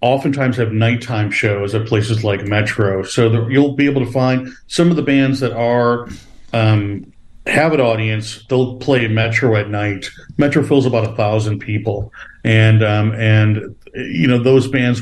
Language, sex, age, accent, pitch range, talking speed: English, male, 40-59, American, 105-125 Hz, 170 wpm